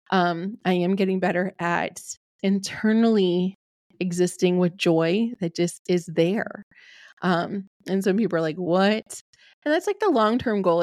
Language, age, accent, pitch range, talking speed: English, 20-39, American, 180-215 Hz, 150 wpm